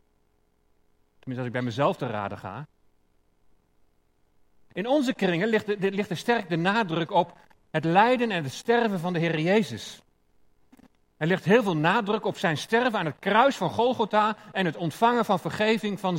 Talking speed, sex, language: 165 wpm, male, Dutch